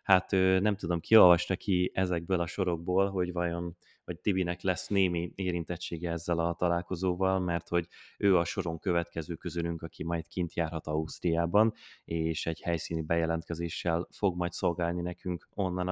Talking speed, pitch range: 150 wpm, 85-95 Hz